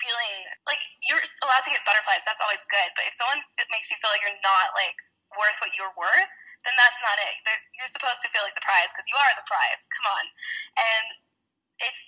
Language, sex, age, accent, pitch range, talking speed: English, female, 10-29, American, 195-260 Hz, 230 wpm